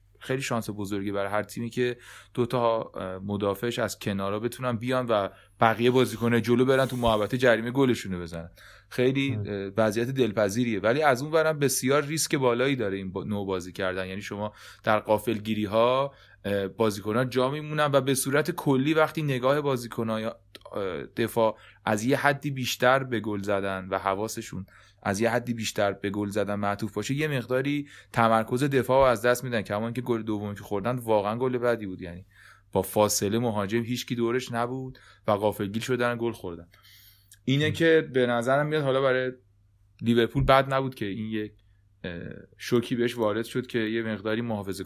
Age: 20-39